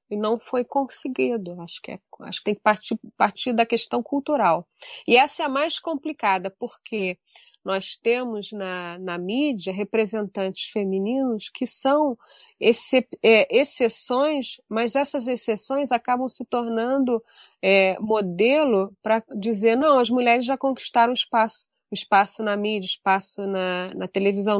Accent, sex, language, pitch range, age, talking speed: Brazilian, female, Portuguese, 195-250 Hz, 30-49, 140 wpm